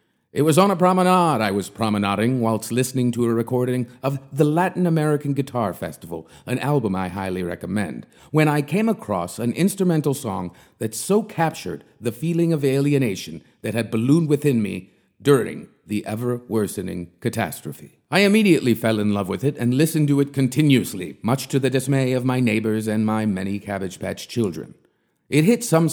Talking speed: 175 wpm